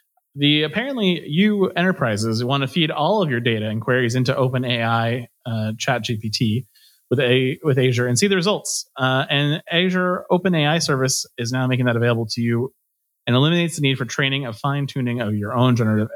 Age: 30-49